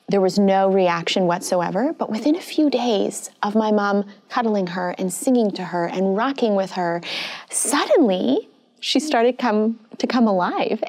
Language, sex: English, female